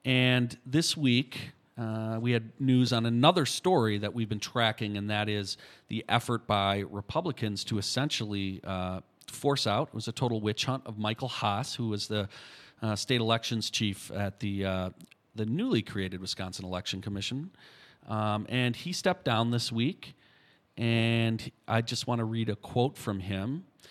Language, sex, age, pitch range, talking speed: English, male, 40-59, 100-125 Hz, 170 wpm